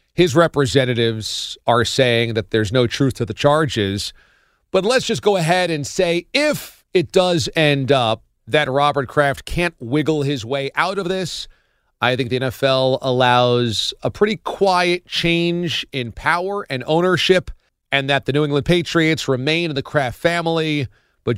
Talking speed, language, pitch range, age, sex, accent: 165 wpm, English, 125-180 Hz, 40-59, male, American